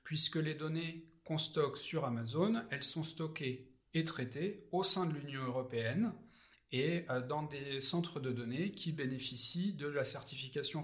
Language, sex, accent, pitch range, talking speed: French, male, French, 130-170 Hz, 155 wpm